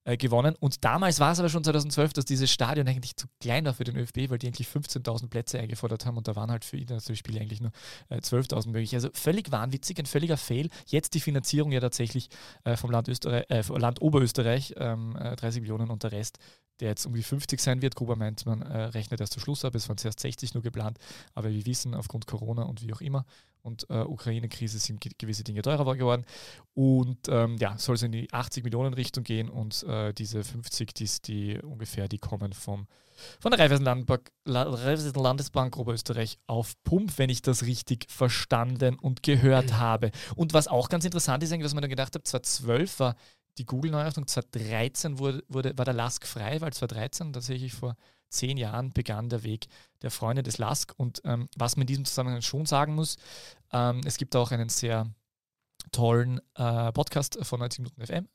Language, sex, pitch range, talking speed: German, male, 115-135 Hz, 210 wpm